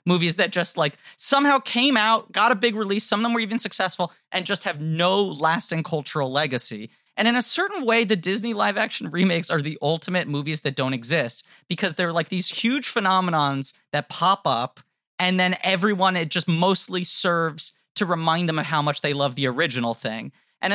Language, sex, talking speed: English, male, 200 wpm